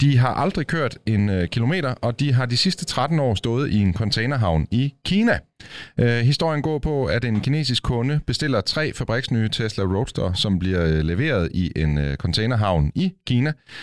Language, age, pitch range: Danish, 30-49, 90-130 Hz